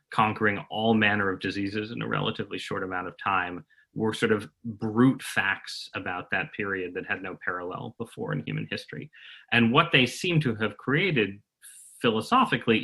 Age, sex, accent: 30-49, male, American